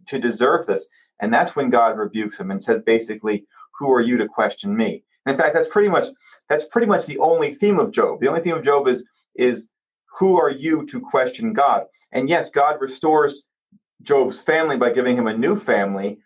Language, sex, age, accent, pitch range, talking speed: English, male, 30-49, American, 115-160 Hz, 210 wpm